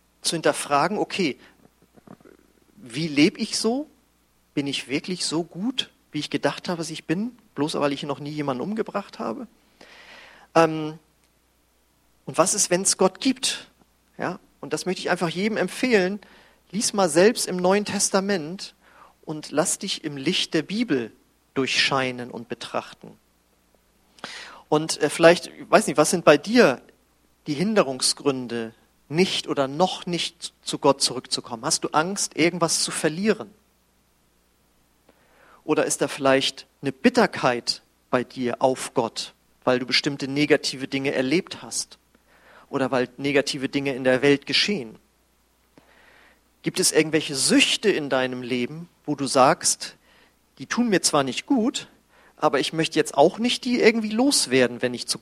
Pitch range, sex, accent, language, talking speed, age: 135-190 Hz, male, German, German, 145 wpm, 40-59